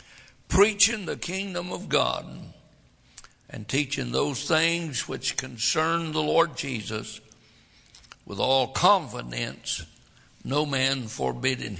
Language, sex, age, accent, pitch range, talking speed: English, male, 60-79, American, 125-160 Hz, 100 wpm